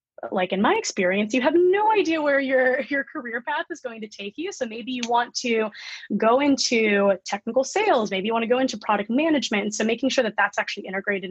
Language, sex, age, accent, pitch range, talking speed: English, female, 20-39, American, 200-255 Hz, 230 wpm